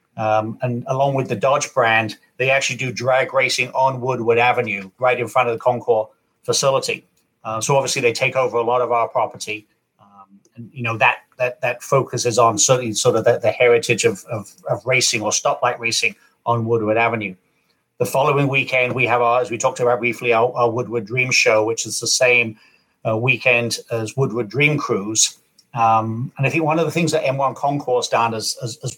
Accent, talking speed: British, 205 wpm